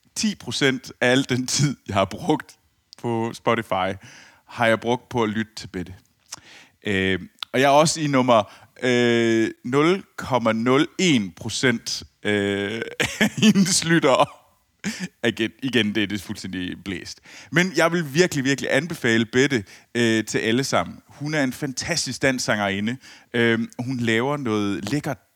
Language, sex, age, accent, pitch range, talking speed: Danish, male, 30-49, native, 105-135 Hz, 145 wpm